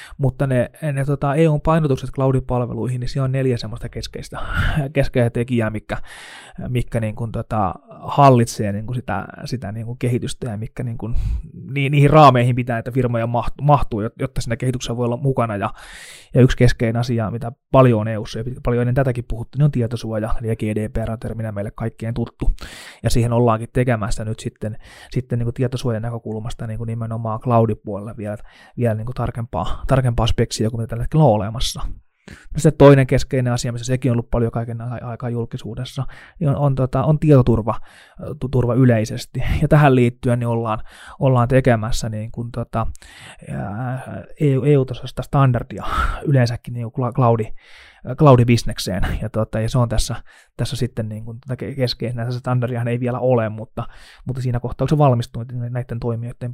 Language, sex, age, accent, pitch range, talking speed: Finnish, male, 20-39, native, 115-130 Hz, 160 wpm